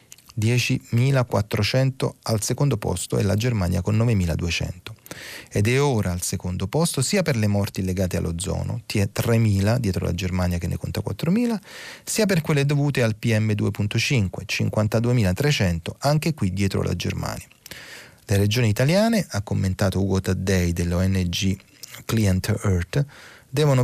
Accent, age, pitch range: native, 30-49, 95-125 Hz